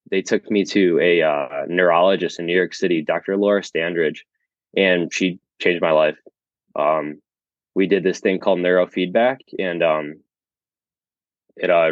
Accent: American